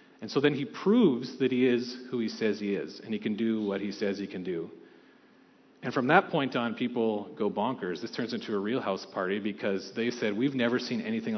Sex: male